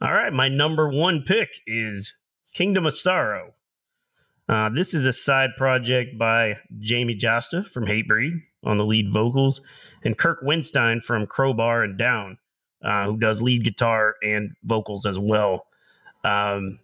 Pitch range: 110-140 Hz